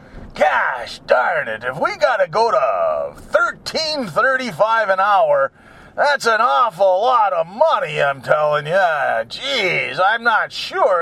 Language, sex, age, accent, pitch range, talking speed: English, male, 40-59, American, 170-270 Hz, 145 wpm